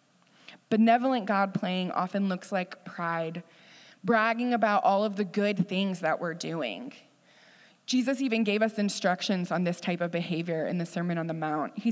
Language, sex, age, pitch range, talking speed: English, female, 20-39, 175-220 Hz, 170 wpm